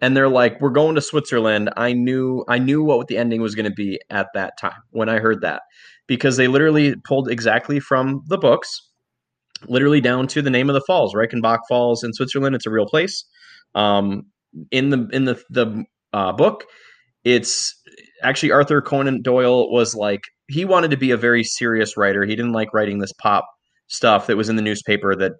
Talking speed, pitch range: 200 wpm, 110-140 Hz